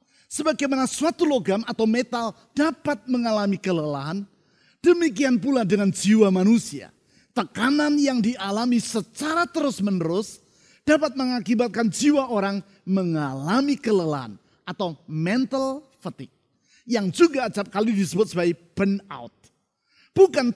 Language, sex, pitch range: Indonesian, male, 185-255 Hz